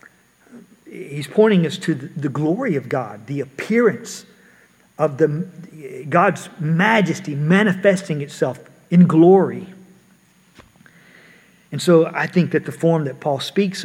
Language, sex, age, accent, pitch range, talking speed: English, male, 50-69, American, 150-185 Hz, 120 wpm